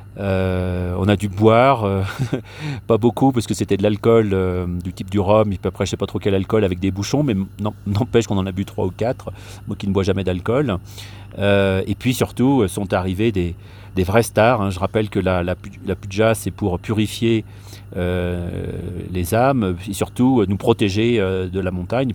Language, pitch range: French, 95-115 Hz